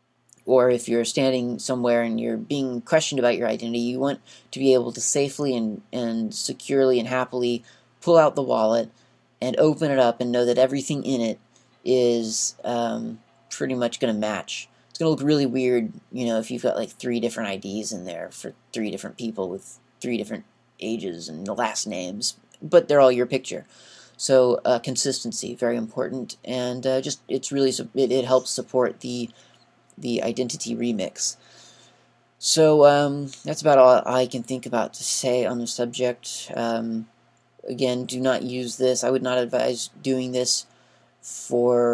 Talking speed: 175 wpm